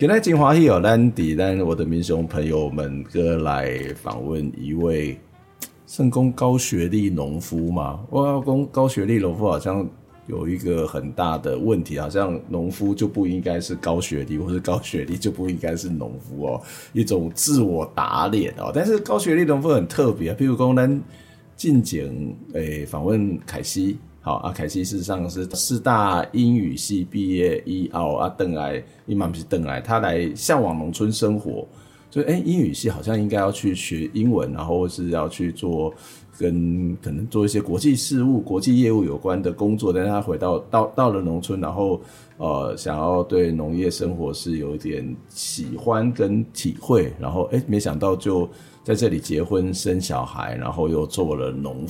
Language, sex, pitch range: Chinese, male, 85-110 Hz